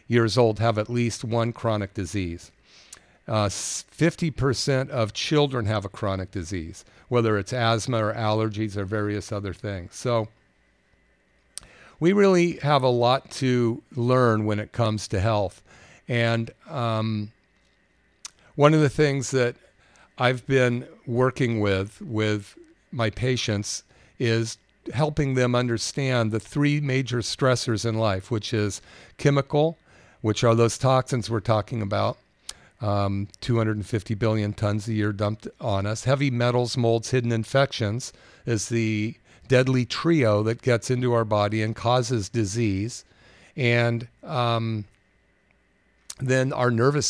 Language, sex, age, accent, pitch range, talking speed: English, male, 50-69, American, 105-125 Hz, 130 wpm